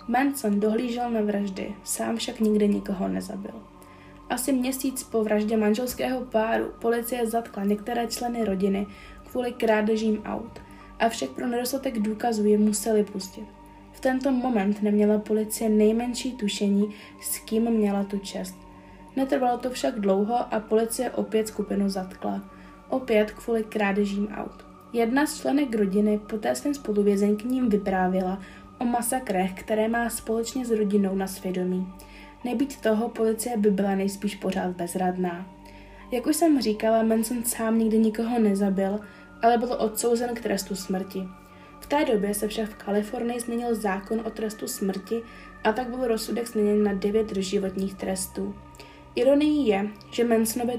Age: 20-39